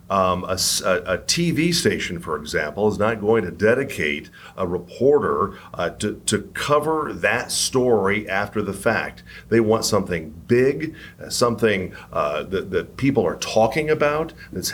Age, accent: 50-69, American